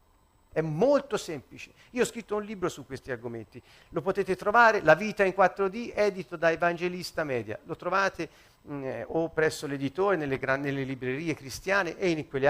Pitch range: 115-170 Hz